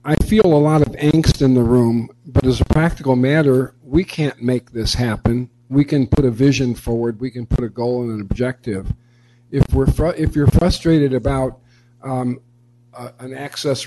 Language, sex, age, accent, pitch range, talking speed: English, male, 50-69, American, 120-140 Hz, 190 wpm